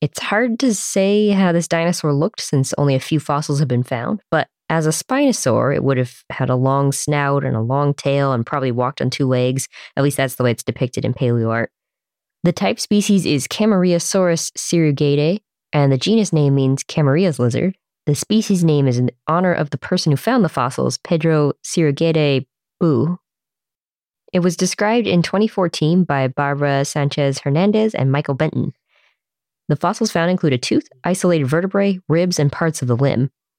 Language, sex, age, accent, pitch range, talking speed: English, female, 20-39, American, 135-175 Hz, 180 wpm